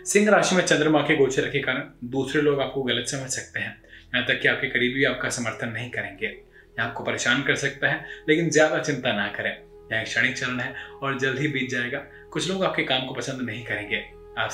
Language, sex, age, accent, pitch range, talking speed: Hindi, male, 20-39, native, 120-155 Hz, 215 wpm